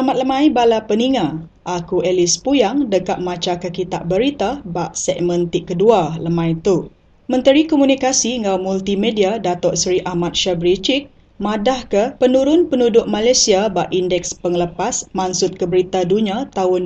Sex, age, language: female, 10-29, English